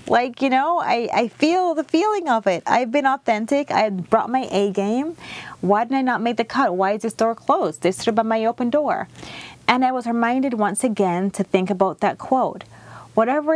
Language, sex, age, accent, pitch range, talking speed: English, female, 30-49, American, 175-240 Hz, 215 wpm